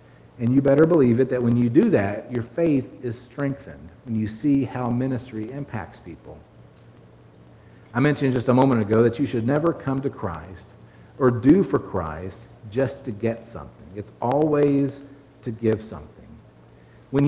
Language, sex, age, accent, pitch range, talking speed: English, male, 50-69, American, 110-140 Hz, 165 wpm